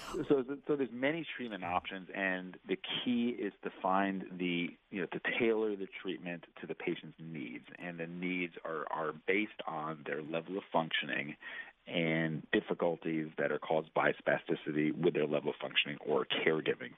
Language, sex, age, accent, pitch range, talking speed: English, male, 40-59, American, 80-95 Hz, 170 wpm